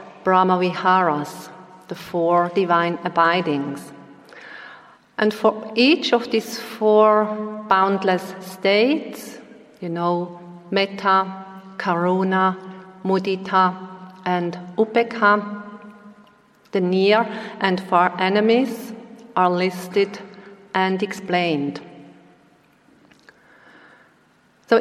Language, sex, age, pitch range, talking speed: English, female, 50-69, 180-220 Hz, 75 wpm